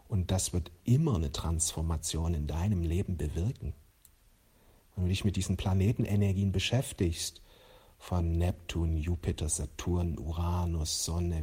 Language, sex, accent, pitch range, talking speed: German, male, German, 90-110 Hz, 120 wpm